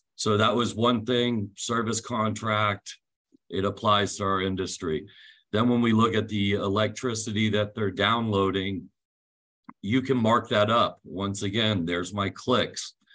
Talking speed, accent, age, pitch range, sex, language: 145 wpm, American, 50-69, 95-105 Hz, male, English